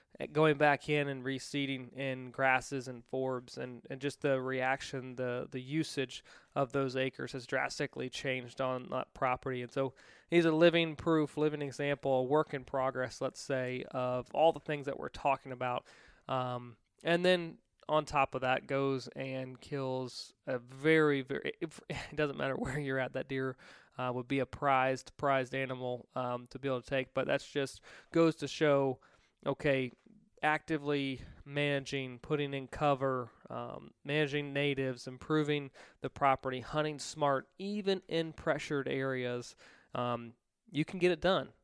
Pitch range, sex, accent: 130-145 Hz, male, American